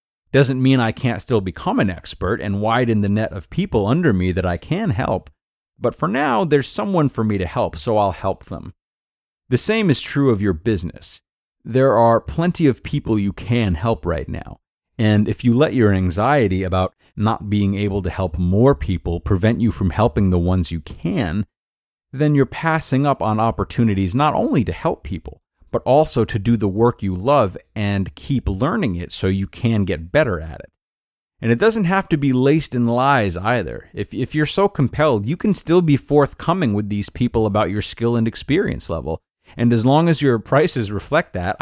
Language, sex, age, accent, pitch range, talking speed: English, male, 30-49, American, 100-135 Hz, 200 wpm